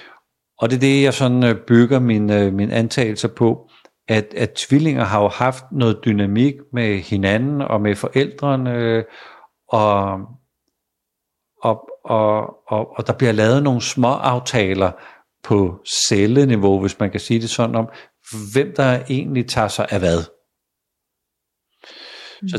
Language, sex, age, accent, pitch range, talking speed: Danish, male, 50-69, native, 100-125 Hz, 140 wpm